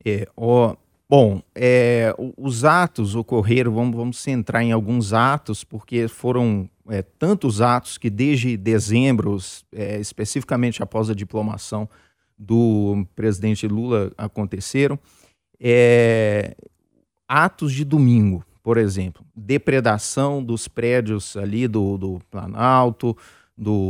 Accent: Brazilian